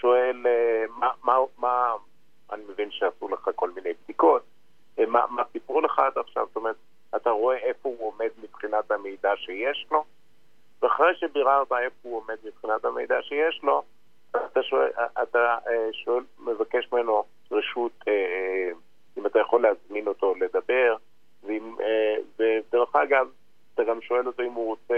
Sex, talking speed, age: male, 140 wpm, 50-69